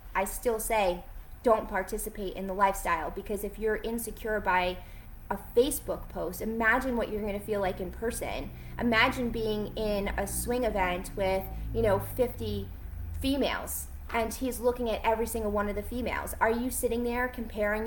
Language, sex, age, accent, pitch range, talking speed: English, female, 20-39, American, 190-230 Hz, 170 wpm